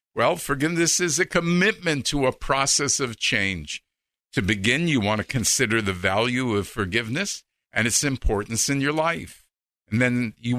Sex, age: male, 50-69